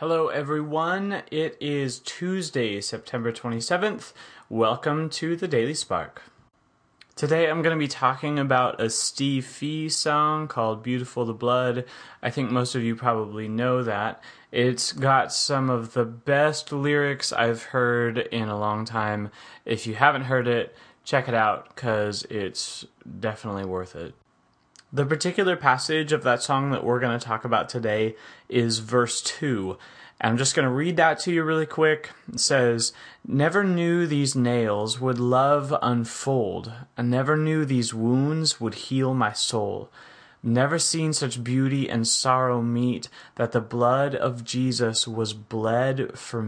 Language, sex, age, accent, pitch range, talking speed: English, male, 30-49, American, 115-145 Hz, 155 wpm